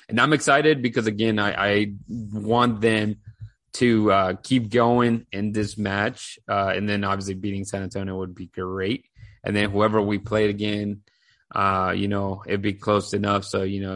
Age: 30-49